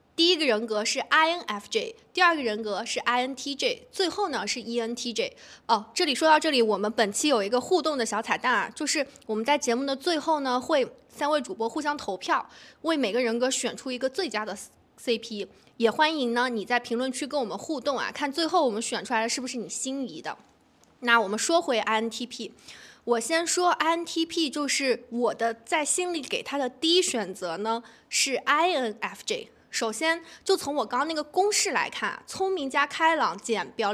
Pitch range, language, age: 235-345 Hz, Chinese, 20-39